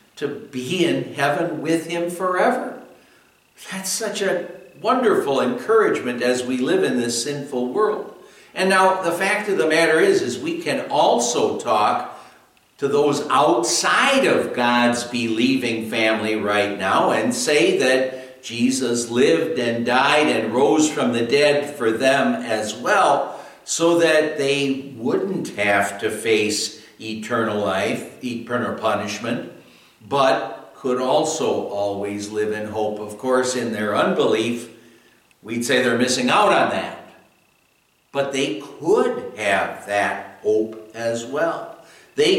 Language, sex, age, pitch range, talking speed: English, male, 60-79, 110-155 Hz, 135 wpm